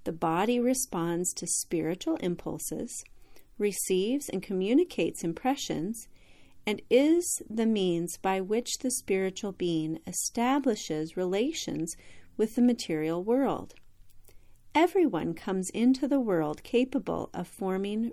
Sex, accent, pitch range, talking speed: female, American, 170-245 Hz, 110 wpm